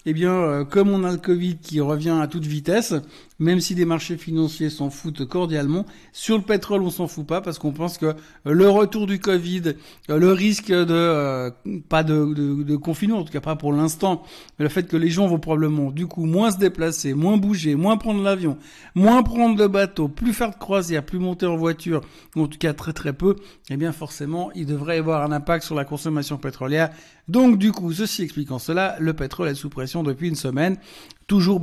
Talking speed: 220 wpm